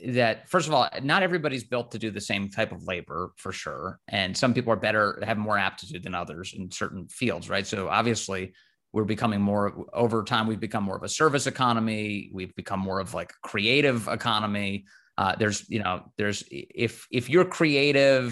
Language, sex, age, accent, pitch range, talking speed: English, male, 30-49, American, 100-125 Hz, 200 wpm